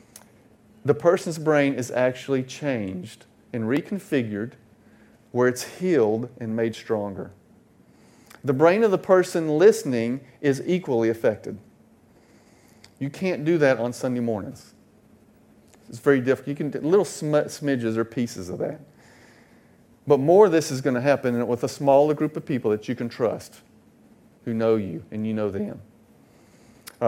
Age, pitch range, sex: 40-59, 125-165 Hz, male